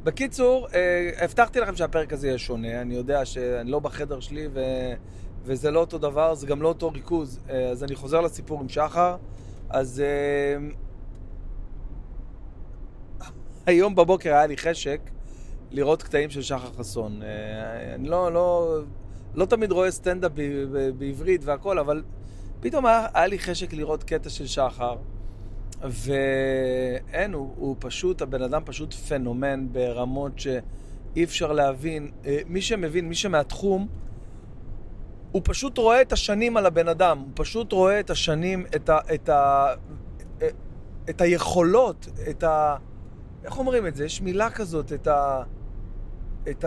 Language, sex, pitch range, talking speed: Hebrew, male, 125-175 Hz, 145 wpm